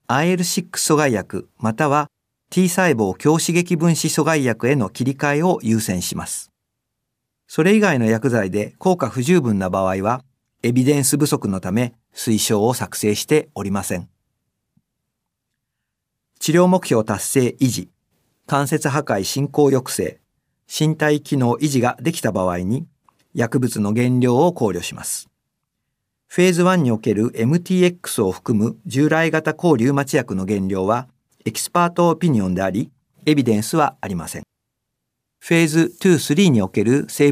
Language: Japanese